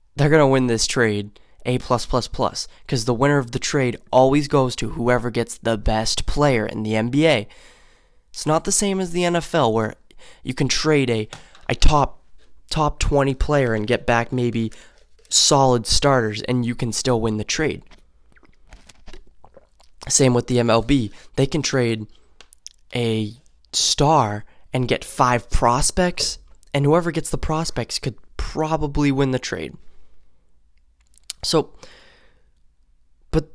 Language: English